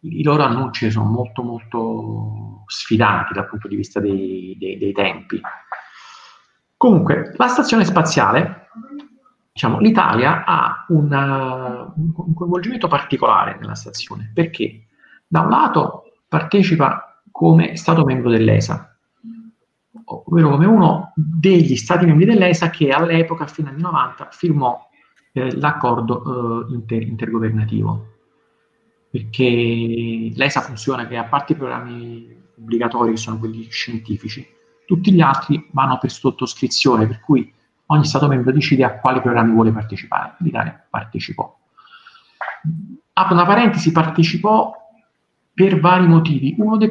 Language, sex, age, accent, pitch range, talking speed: Italian, male, 40-59, native, 115-170 Hz, 125 wpm